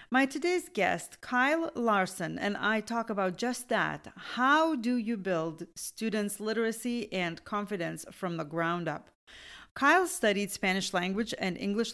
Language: English